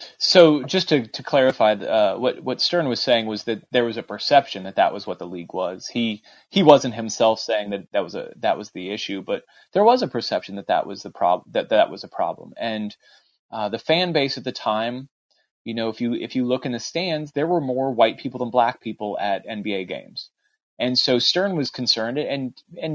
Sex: male